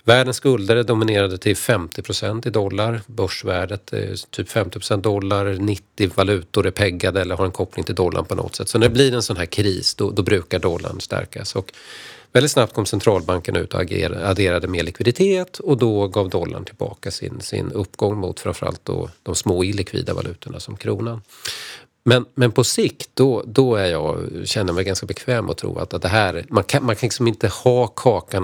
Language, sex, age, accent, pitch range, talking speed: Swedish, male, 40-59, native, 95-120 Hz, 200 wpm